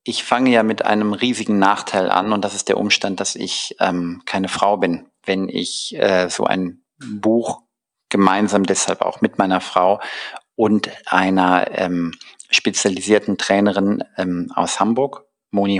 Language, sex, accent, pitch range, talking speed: German, male, German, 95-130 Hz, 150 wpm